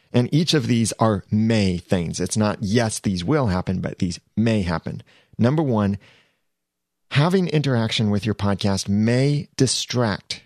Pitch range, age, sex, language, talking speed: 95-120 Hz, 30-49, male, English, 150 wpm